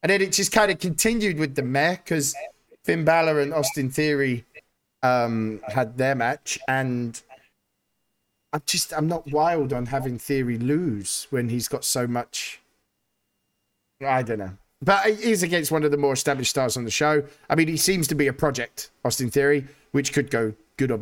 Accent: British